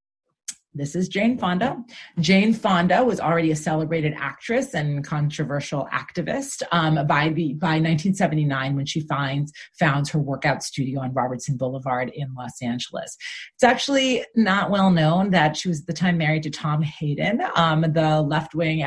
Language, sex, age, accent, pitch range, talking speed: English, female, 30-49, American, 150-195 Hz, 155 wpm